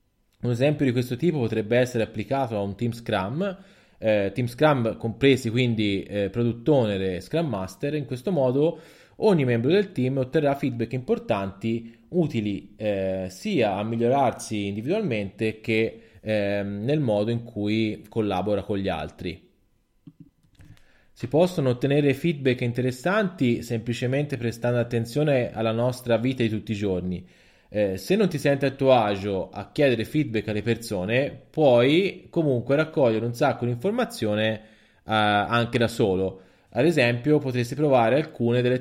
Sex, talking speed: male, 145 wpm